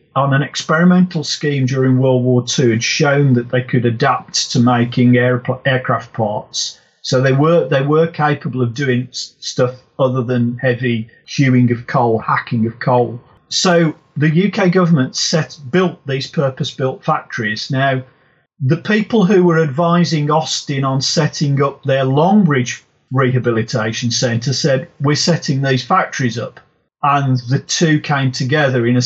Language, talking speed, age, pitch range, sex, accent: English, 150 wpm, 40-59, 125-155 Hz, male, British